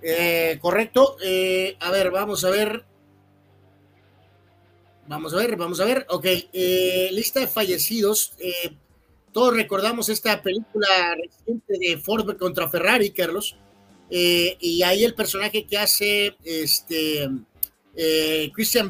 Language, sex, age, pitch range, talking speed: Spanish, male, 40-59, 165-205 Hz, 120 wpm